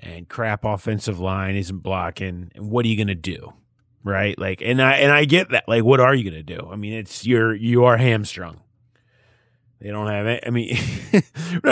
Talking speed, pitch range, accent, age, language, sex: 200 wpm, 105-130 Hz, American, 30-49, English, male